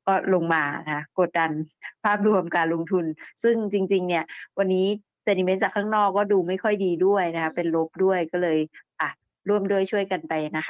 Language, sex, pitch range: Thai, female, 175-220 Hz